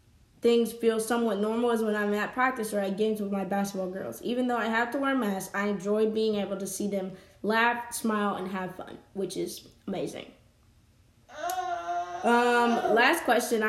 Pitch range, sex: 205-240 Hz, female